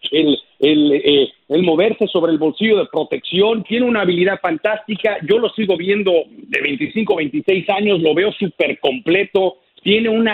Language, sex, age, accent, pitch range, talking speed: Spanish, male, 40-59, Mexican, 160-220 Hz, 165 wpm